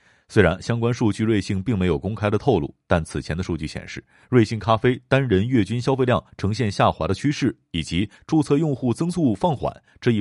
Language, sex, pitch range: Chinese, male, 90-120 Hz